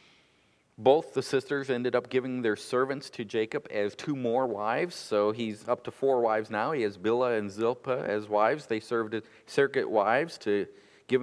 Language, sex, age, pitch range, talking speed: English, male, 50-69, 110-135 Hz, 185 wpm